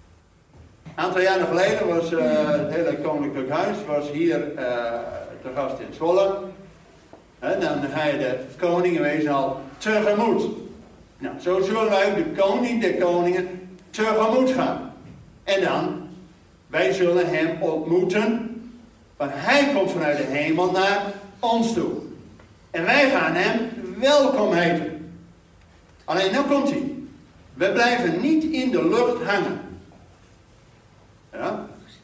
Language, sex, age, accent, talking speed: Dutch, male, 60-79, Dutch, 125 wpm